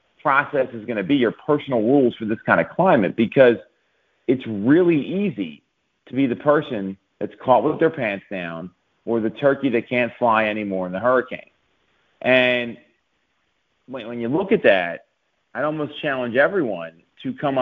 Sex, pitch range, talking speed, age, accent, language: male, 110-135 Hz, 165 wpm, 40-59, American, English